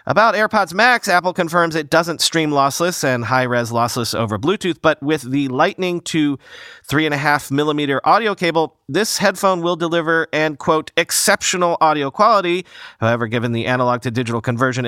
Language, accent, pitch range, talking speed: English, American, 135-180 Hz, 145 wpm